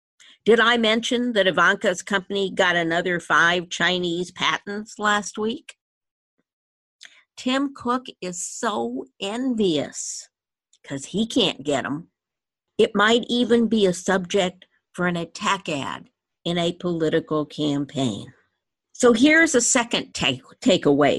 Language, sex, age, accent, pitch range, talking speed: English, female, 50-69, American, 170-215 Hz, 120 wpm